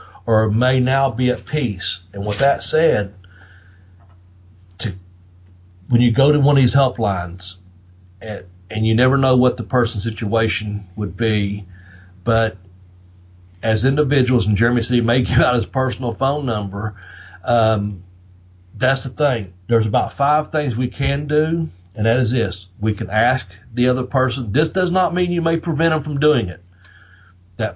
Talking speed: 165 wpm